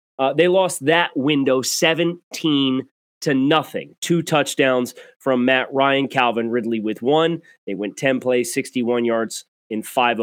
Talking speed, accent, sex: 145 wpm, American, male